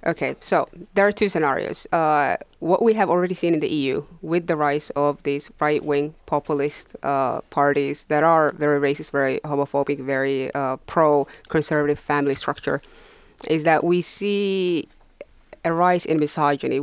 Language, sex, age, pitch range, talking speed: Finnish, female, 30-49, 145-165 Hz, 155 wpm